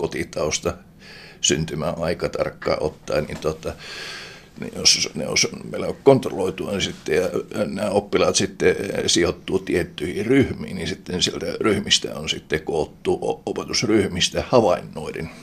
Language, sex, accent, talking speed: Finnish, male, native, 115 wpm